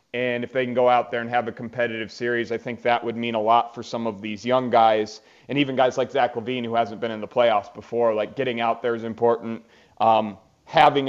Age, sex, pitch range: 30-49, male, 115-140 Hz